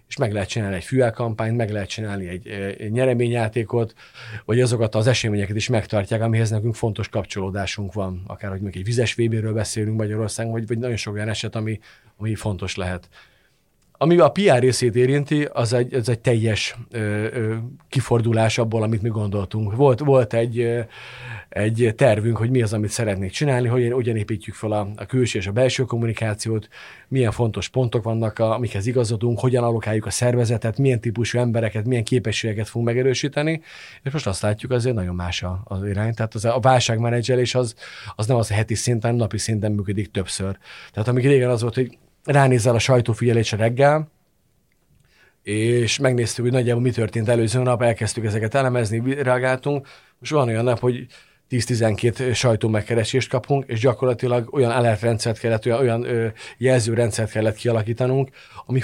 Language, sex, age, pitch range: Hungarian, male, 40-59, 110-125 Hz